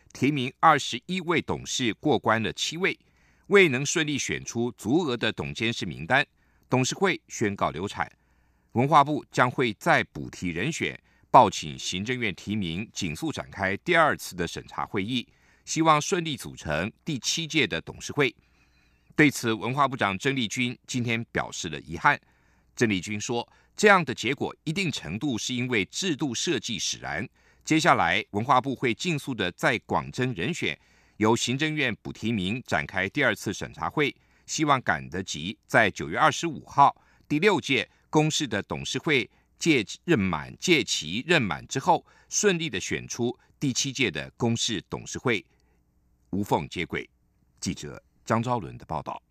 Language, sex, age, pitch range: German, male, 50-69, 95-140 Hz